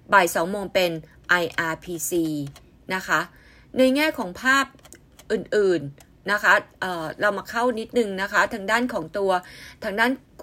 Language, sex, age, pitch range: Thai, female, 20-39, 180-235 Hz